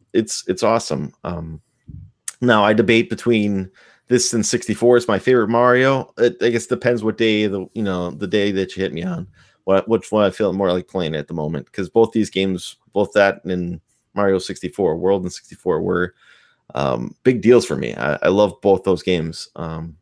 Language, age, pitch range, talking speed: English, 20-39, 90-110 Hz, 210 wpm